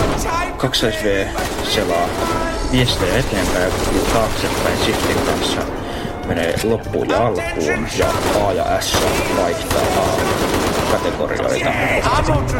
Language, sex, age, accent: Finnish, male, 20-39, native